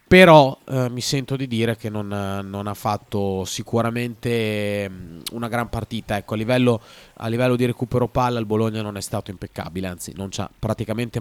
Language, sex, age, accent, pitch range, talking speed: Italian, male, 30-49, native, 105-135 Hz, 170 wpm